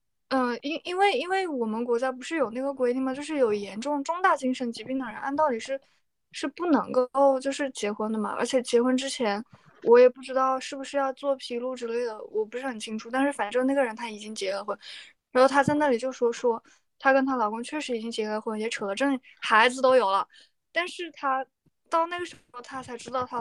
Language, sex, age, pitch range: Chinese, female, 20-39, 230-280 Hz